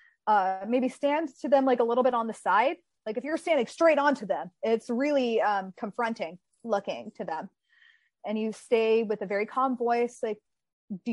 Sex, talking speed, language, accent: female, 195 wpm, English, American